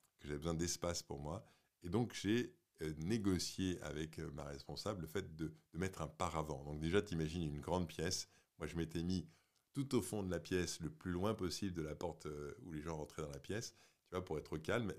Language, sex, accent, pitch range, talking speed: French, male, French, 80-100 Hz, 230 wpm